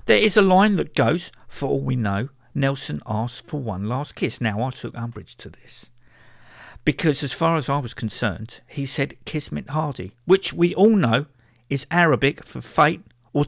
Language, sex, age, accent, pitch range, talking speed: English, male, 50-69, British, 115-170 Hz, 190 wpm